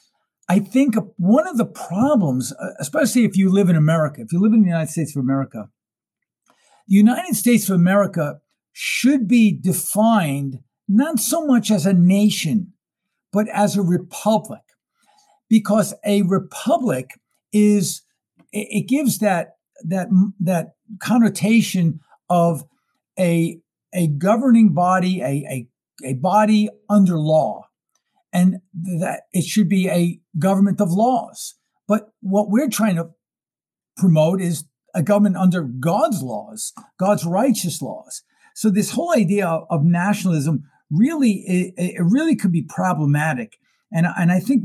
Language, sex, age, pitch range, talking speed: English, male, 60-79, 165-210 Hz, 135 wpm